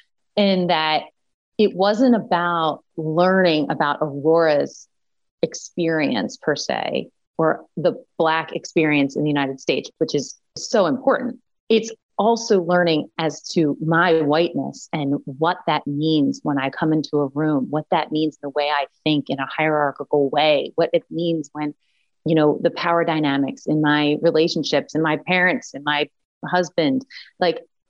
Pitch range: 150-190 Hz